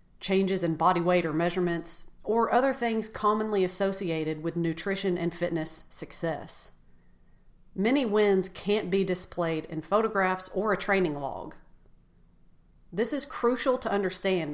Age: 40-59